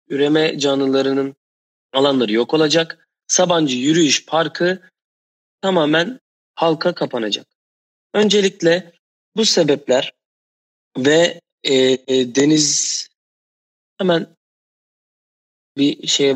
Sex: male